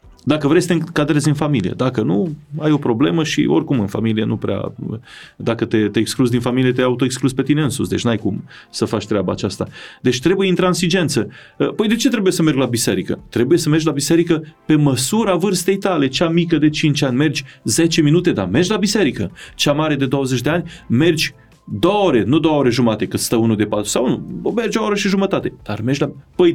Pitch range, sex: 125-175 Hz, male